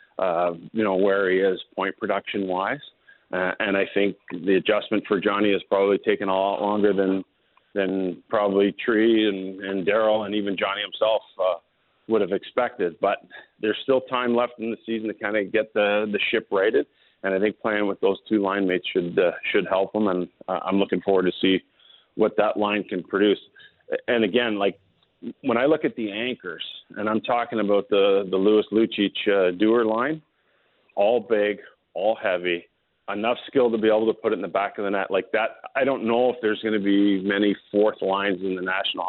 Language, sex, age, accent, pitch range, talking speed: English, male, 40-59, American, 95-110 Hz, 205 wpm